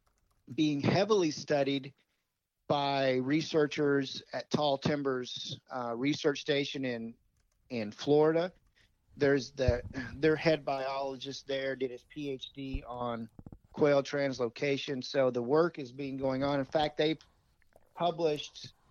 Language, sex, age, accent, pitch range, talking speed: English, male, 40-59, American, 125-150 Hz, 115 wpm